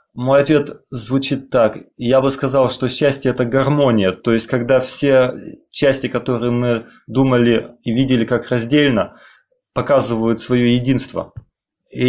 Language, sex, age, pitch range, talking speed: English, male, 20-39, 115-135 Hz, 140 wpm